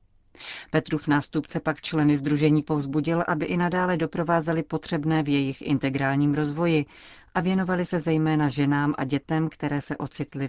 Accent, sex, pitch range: native, female, 135-155 Hz